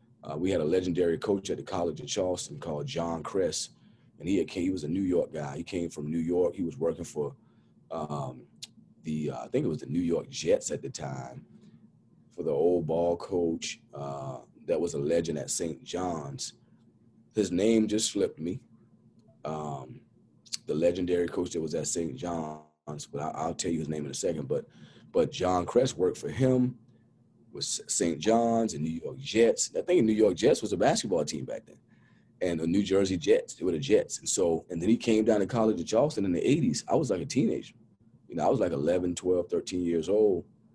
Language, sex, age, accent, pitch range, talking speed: English, male, 30-49, American, 80-110 Hz, 215 wpm